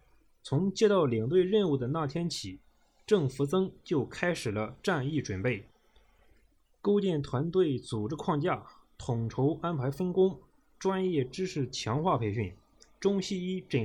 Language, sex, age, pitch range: Chinese, male, 20-39, 125-175 Hz